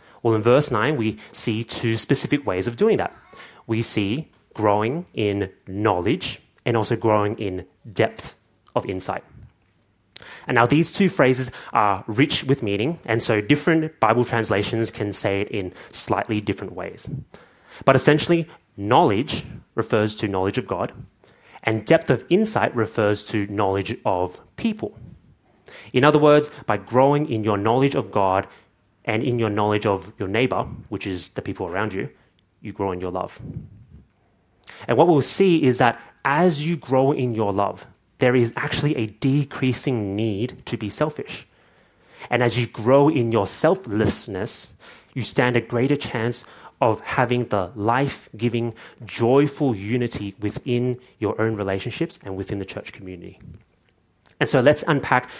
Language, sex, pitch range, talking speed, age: English, male, 105-130 Hz, 155 wpm, 30-49